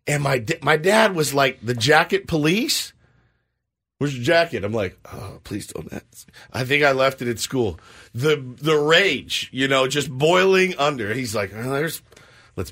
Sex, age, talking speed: male, 50-69, 180 wpm